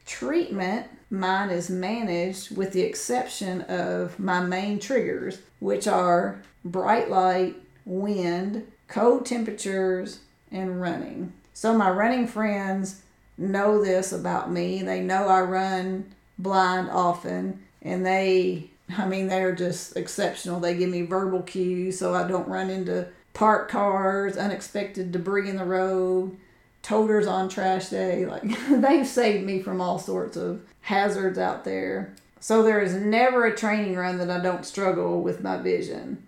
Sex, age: female, 40-59